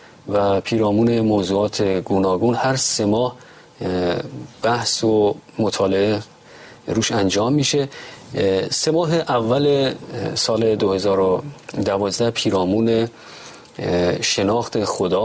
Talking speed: 85 wpm